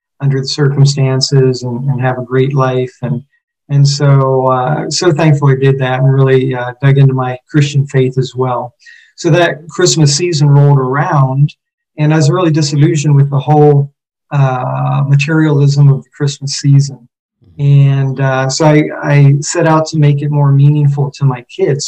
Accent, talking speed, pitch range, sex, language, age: American, 175 wpm, 130-150 Hz, male, English, 40-59